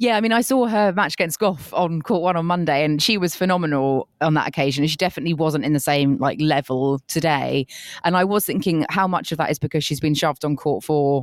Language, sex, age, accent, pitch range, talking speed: English, female, 20-39, British, 140-170 Hz, 245 wpm